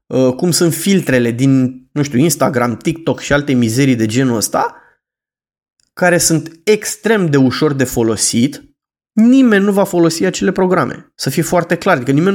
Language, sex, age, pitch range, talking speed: Romanian, male, 20-39, 135-175 Hz, 160 wpm